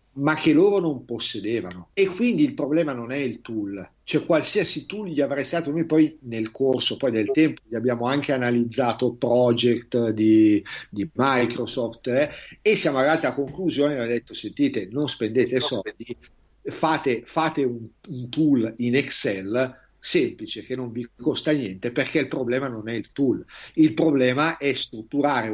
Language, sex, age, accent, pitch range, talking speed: Italian, male, 50-69, native, 120-165 Hz, 160 wpm